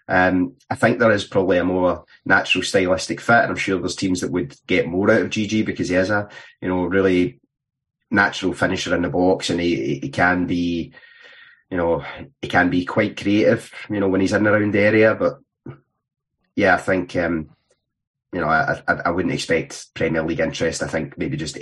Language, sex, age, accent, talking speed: English, male, 30-49, British, 205 wpm